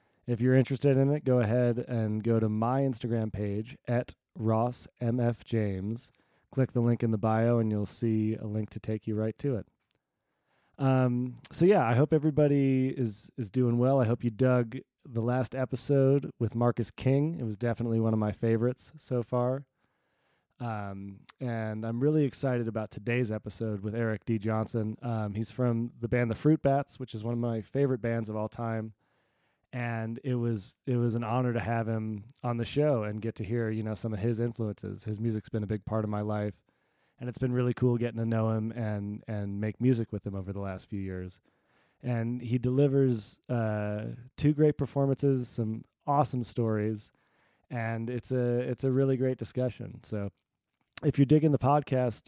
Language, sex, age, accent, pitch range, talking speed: English, male, 20-39, American, 110-130 Hz, 195 wpm